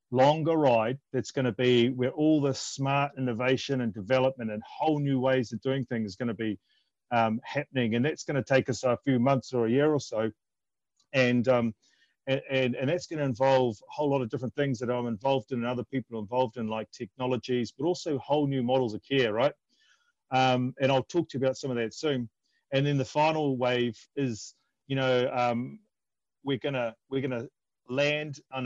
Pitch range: 120-140 Hz